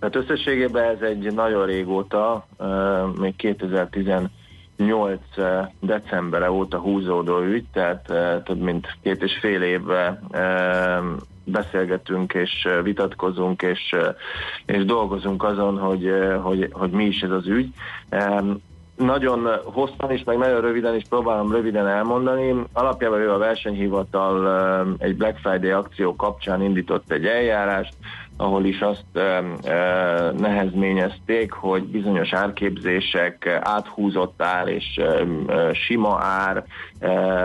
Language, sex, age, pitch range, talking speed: Hungarian, male, 30-49, 95-105 Hz, 115 wpm